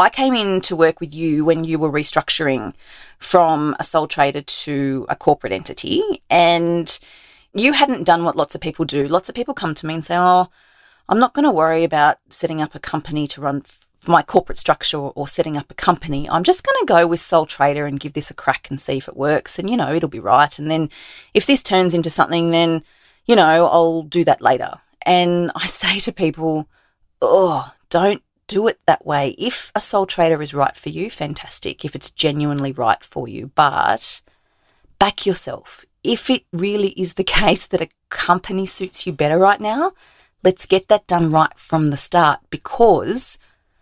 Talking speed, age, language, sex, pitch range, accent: 205 wpm, 30-49, English, female, 155-200 Hz, Australian